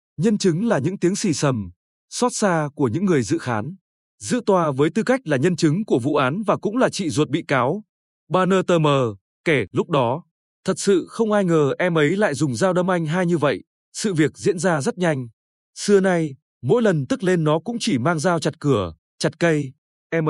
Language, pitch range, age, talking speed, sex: Vietnamese, 140-195 Hz, 20-39, 225 wpm, male